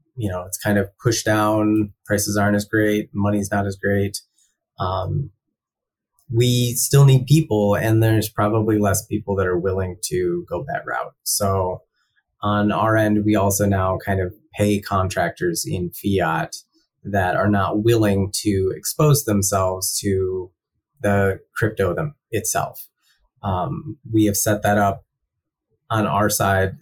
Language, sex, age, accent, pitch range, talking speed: English, male, 20-39, American, 95-110 Hz, 150 wpm